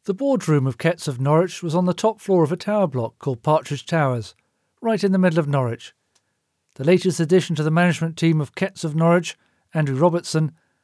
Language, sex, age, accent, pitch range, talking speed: English, male, 40-59, British, 135-175 Hz, 205 wpm